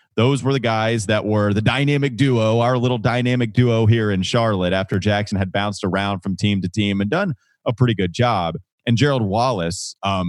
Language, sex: English, male